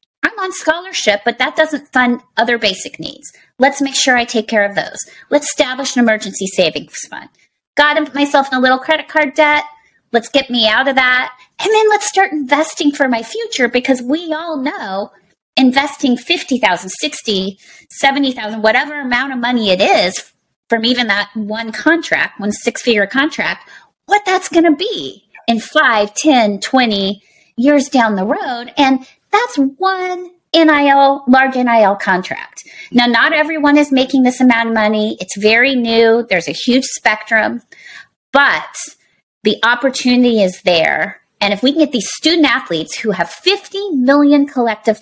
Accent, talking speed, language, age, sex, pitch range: American, 165 wpm, English, 30-49, female, 215-290 Hz